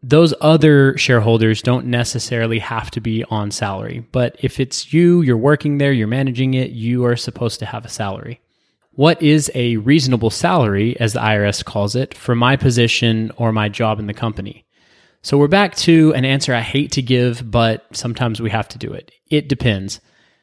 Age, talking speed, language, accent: 20-39, 190 wpm, English, American